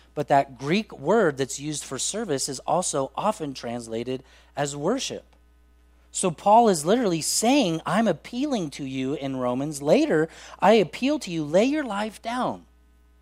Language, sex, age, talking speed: English, male, 30-49, 155 wpm